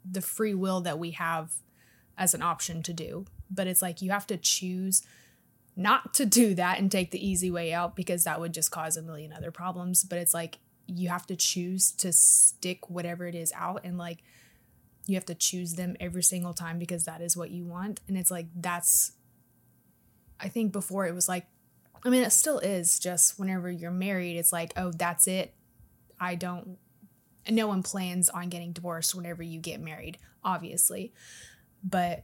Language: English